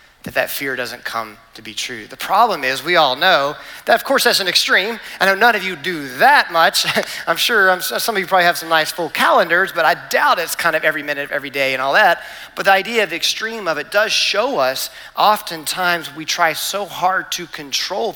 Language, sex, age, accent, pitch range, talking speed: English, male, 40-59, American, 165-220 Hz, 240 wpm